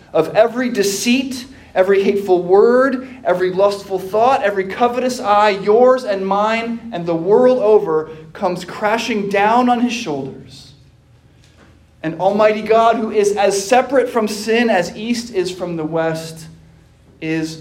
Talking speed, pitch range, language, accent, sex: 140 wpm, 140-205 Hz, English, American, male